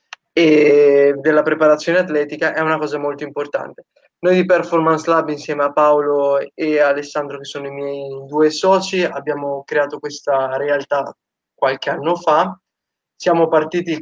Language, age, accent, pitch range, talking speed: Italian, 20-39, native, 145-170 Hz, 140 wpm